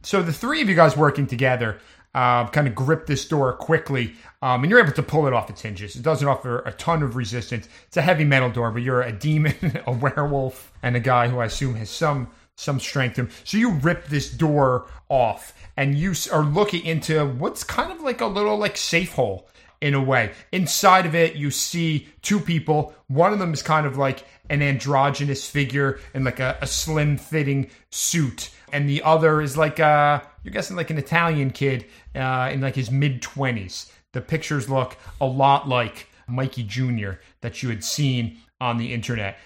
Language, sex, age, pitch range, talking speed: English, male, 30-49, 125-150 Hz, 200 wpm